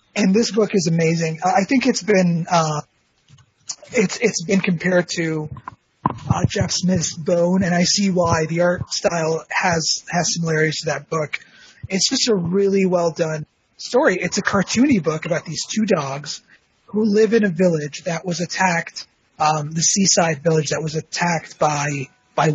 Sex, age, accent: male, 30-49, American